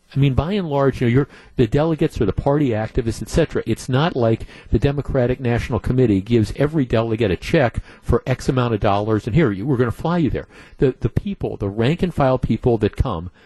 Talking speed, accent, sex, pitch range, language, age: 245 wpm, American, male, 110-135 Hz, English, 50-69